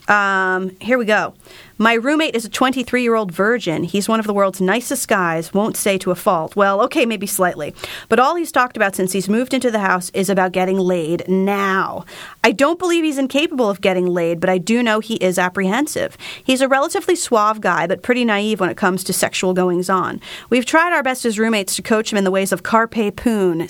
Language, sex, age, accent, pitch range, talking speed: English, female, 30-49, American, 185-240 Hz, 220 wpm